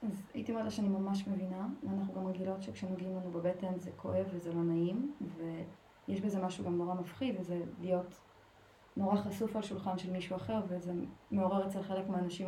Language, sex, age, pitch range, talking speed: Hebrew, female, 20-39, 185-215 Hz, 180 wpm